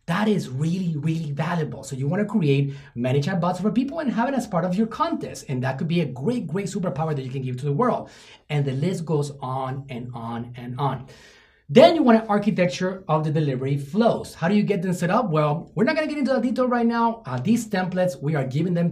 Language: English